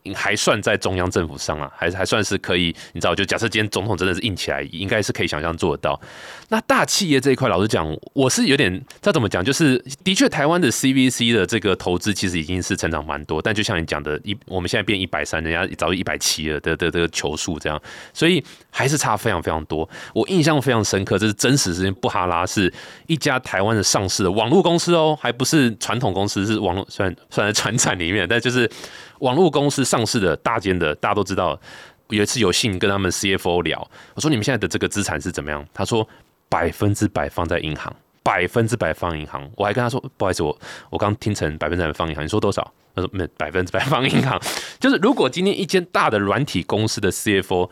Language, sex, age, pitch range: Chinese, male, 20-39, 90-125 Hz